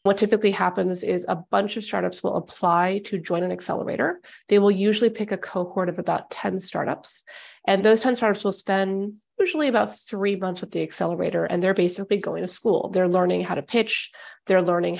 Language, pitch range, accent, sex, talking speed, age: English, 180-210 Hz, American, female, 200 wpm, 30-49